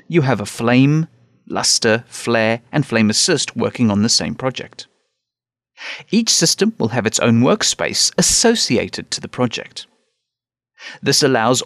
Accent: British